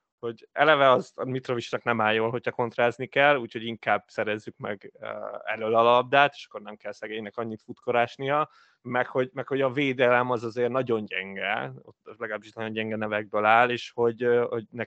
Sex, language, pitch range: male, Hungarian, 110-130 Hz